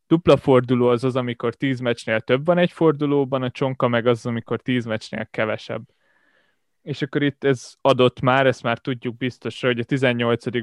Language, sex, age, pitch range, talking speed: Hungarian, male, 20-39, 120-140 Hz, 180 wpm